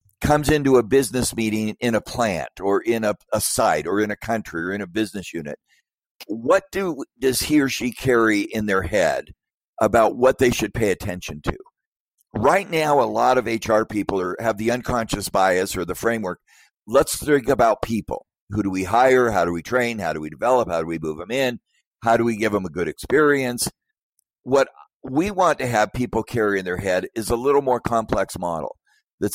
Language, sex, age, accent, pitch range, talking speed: English, male, 60-79, American, 105-125 Hz, 205 wpm